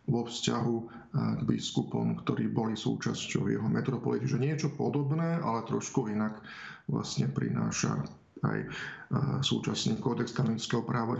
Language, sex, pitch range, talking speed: Slovak, male, 115-135 Hz, 115 wpm